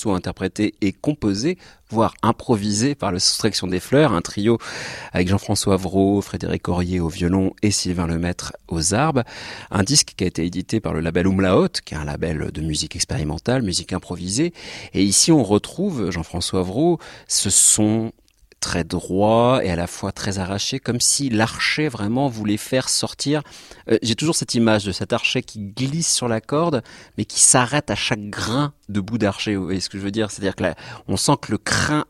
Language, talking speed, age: French, 190 wpm, 40-59